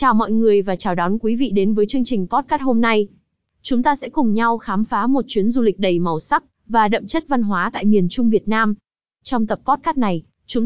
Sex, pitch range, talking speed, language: female, 200-250 Hz, 250 wpm, Vietnamese